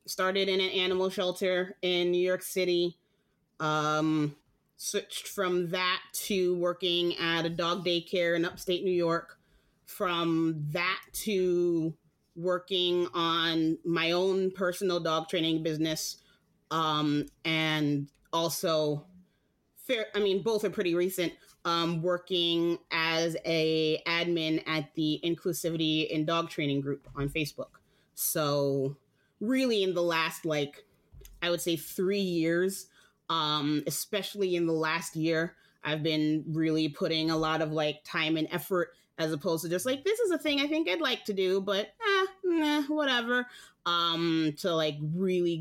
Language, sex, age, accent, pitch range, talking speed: English, female, 30-49, American, 160-185 Hz, 145 wpm